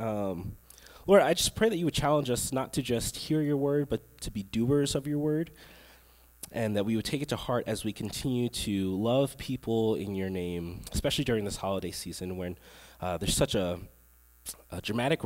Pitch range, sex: 90-140 Hz, male